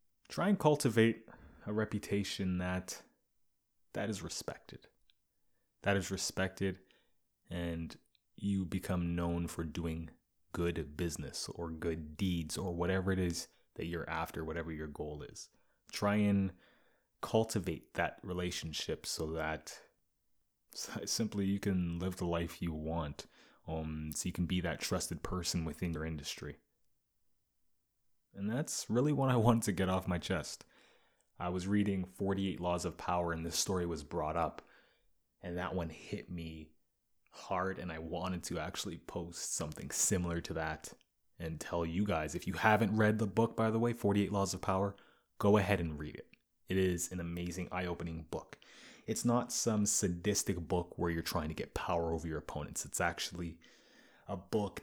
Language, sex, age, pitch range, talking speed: English, male, 20-39, 80-100 Hz, 160 wpm